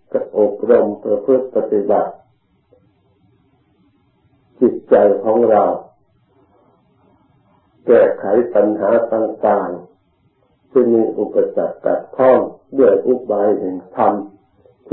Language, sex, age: Thai, male, 50-69